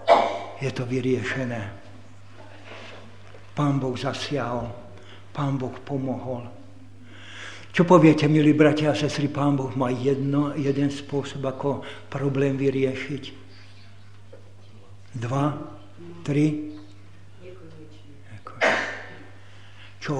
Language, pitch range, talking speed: Slovak, 105-145 Hz, 80 wpm